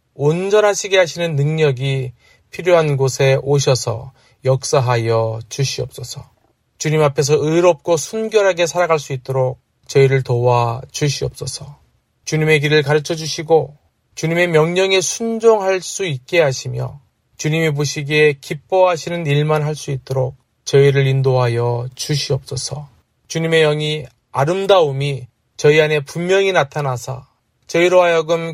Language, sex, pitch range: Korean, male, 130-160 Hz